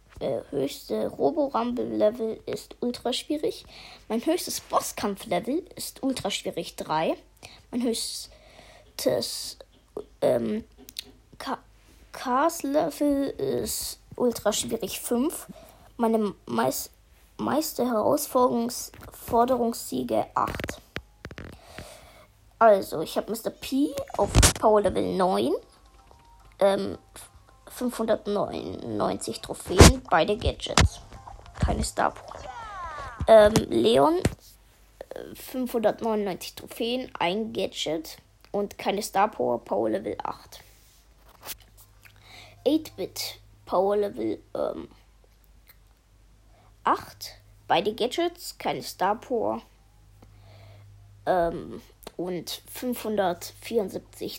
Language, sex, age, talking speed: German, female, 20-39, 70 wpm